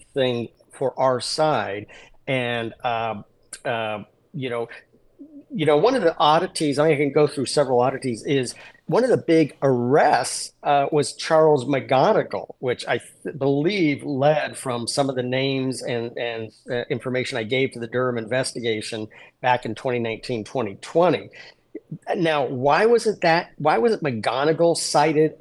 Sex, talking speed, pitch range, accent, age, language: male, 160 wpm, 125-155 Hz, American, 40-59, English